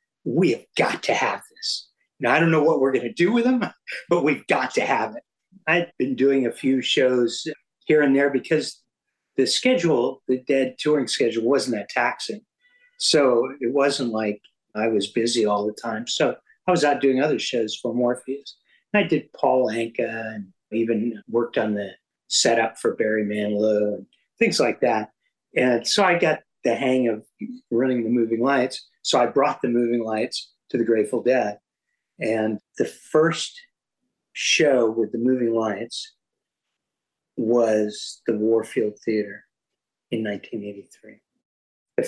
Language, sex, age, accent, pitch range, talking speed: English, male, 50-69, American, 115-160 Hz, 160 wpm